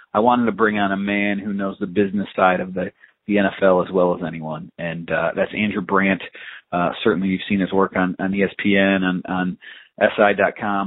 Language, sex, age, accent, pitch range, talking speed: English, male, 30-49, American, 95-105 Hz, 205 wpm